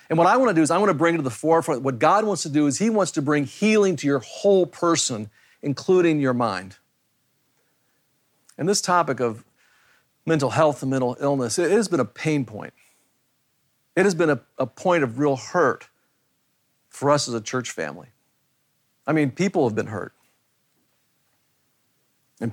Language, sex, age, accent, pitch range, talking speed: English, male, 50-69, American, 130-165 Hz, 180 wpm